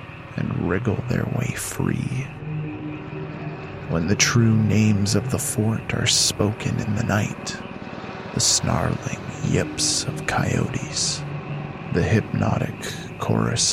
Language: English